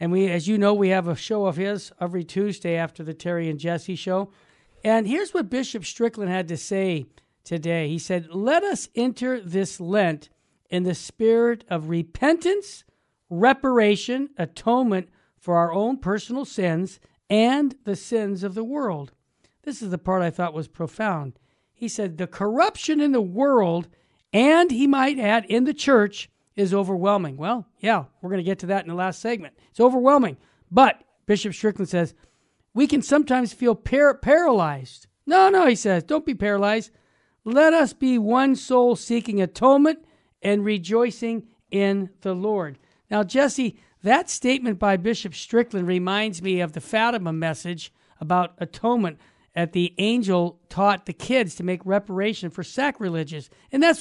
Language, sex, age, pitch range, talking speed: English, male, 50-69, 175-240 Hz, 165 wpm